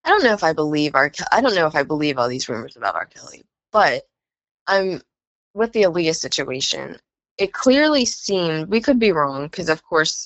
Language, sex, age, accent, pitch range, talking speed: English, female, 10-29, American, 155-210 Hz, 210 wpm